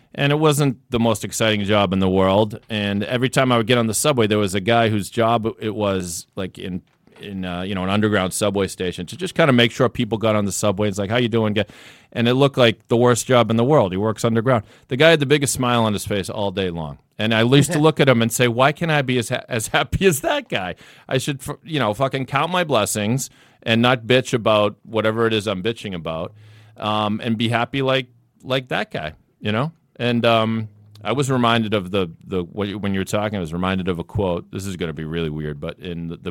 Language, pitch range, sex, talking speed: English, 95-120 Hz, male, 255 wpm